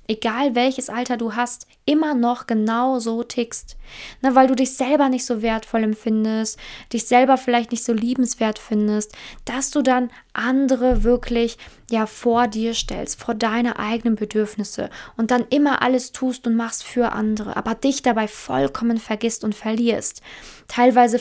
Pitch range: 230-270 Hz